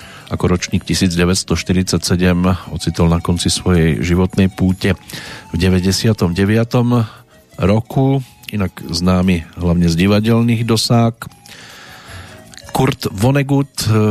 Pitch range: 90-115 Hz